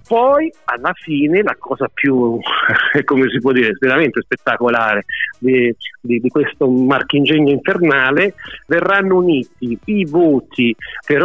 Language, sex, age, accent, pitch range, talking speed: Italian, male, 50-69, native, 130-180 Hz, 125 wpm